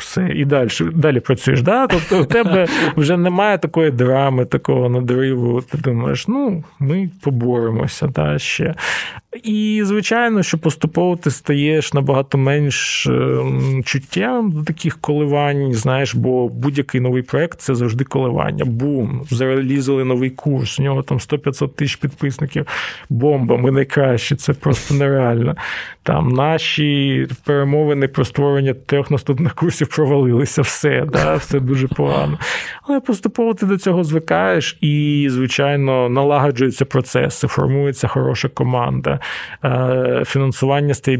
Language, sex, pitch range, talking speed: Ukrainian, male, 130-155 Hz, 130 wpm